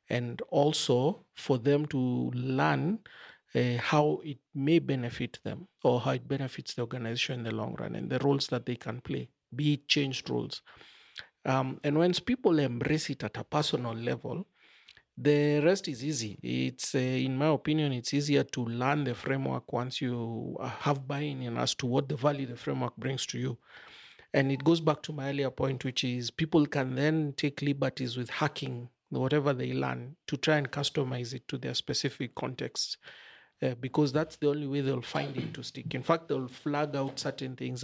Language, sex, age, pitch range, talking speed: English, male, 40-59, 125-150 Hz, 190 wpm